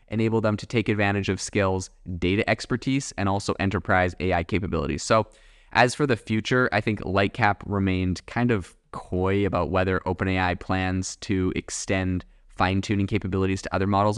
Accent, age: American, 20-39